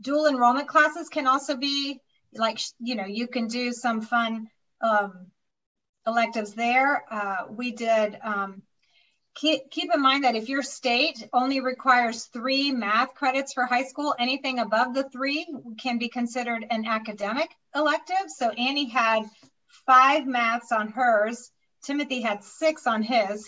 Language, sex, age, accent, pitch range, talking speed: English, female, 40-59, American, 220-270 Hz, 150 wpm